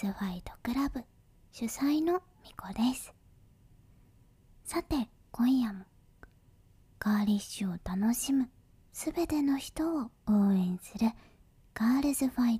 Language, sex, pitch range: Japanese, male, 200-260 Hz